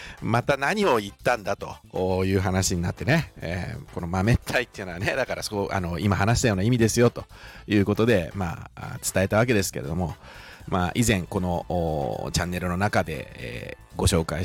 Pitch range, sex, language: 90-115 Hz, male, Japanese